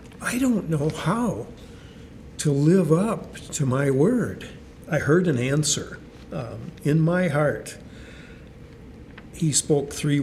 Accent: American